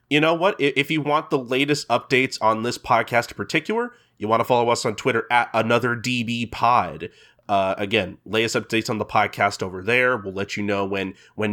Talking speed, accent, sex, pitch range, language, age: 200 wpm, American, male, 110-145 Hz, English, 30-49